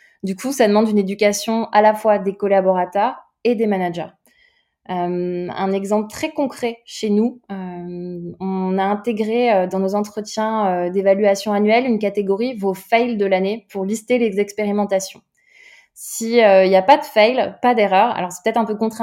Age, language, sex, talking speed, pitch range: 20-39, French, female, 185 wpm, 190-220 Hz